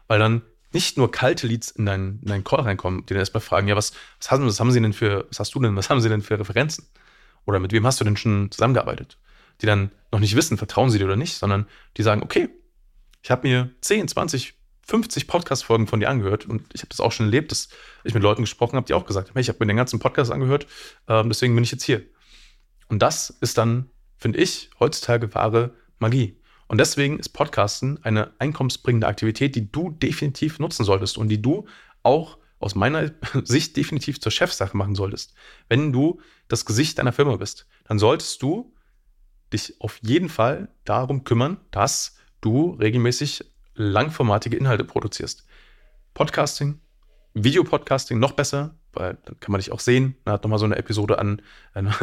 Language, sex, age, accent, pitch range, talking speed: German, male, 30-49, German, 105-135 Hz, 195 wpm